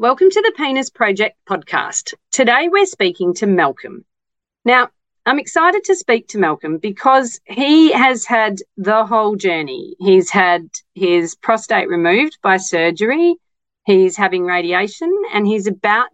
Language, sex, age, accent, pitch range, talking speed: English, female, 40-59, Australian, 190-250 Hz, 140 wpm